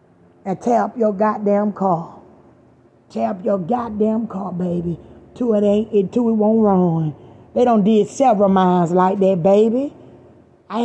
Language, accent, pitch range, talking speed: English, American, 190-230 Hz, 150 wpm